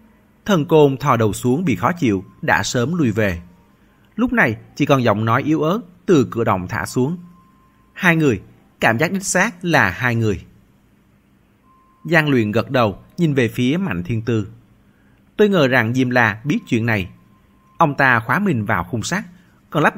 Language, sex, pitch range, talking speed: Vietnamese, male, 105-160 Hz, 185 wpm